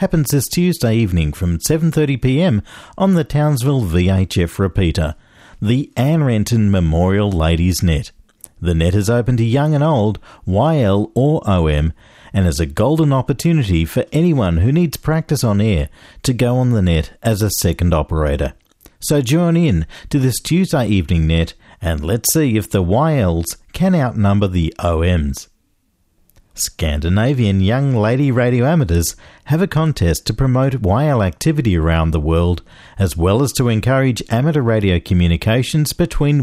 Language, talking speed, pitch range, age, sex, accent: English, 150 wpm, 85-140 Hz, 50-69, male, Australian